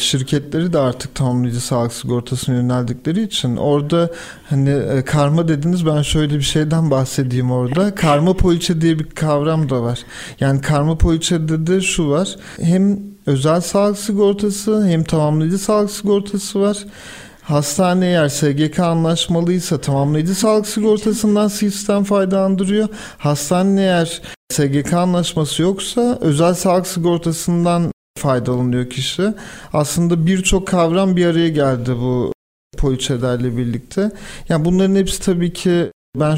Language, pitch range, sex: Turkish, 140-180 Hz, male